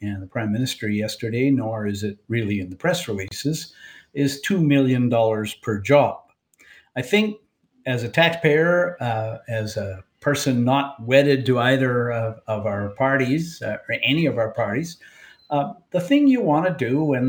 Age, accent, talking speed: 50-69, American, 170 wpm